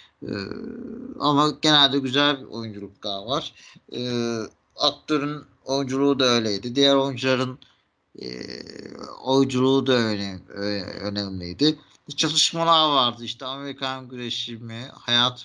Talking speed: 105 wpm